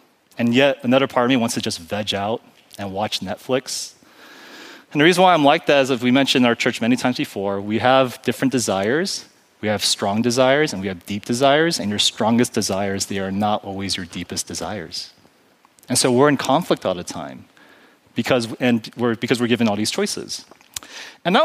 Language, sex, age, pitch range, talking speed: English, male, 30-49, 115-150 Hz, 205 wpm